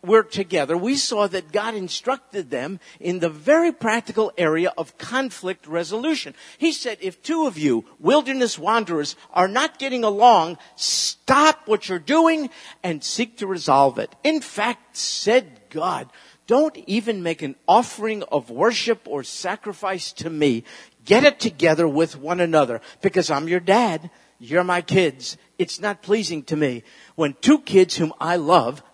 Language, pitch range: English, 160-240 Hz